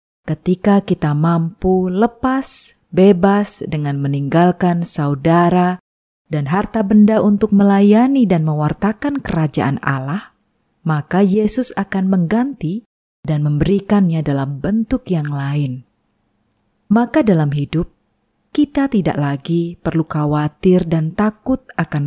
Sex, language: female, Indonesian